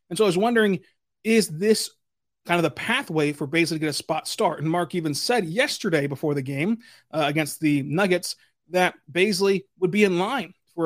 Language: English